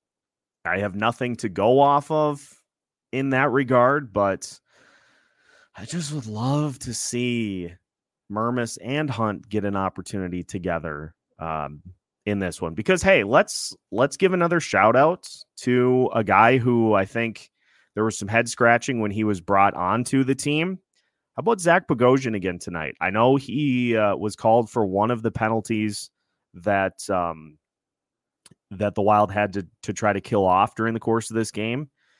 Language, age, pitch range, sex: English, 30-49, 105-135 Hz, male